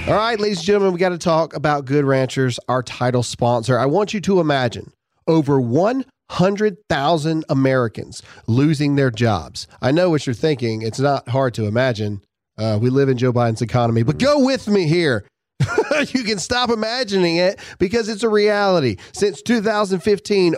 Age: 40-59